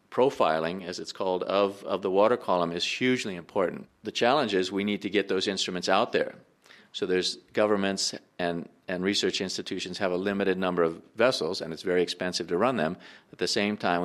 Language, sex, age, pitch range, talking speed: English, male, 40-59, 85-95 Hz, 200 wpm